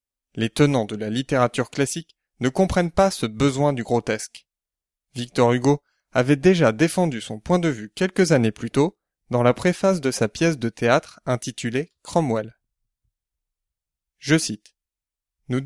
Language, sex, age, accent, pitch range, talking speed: French, male, 20-39, French, 115-165 Hz, 150 wpm